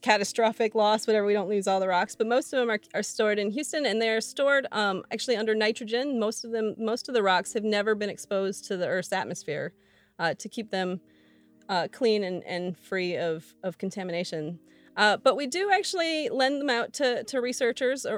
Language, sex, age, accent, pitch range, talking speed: English, female, 30-49, American, 190-240 Hz, 210 wpm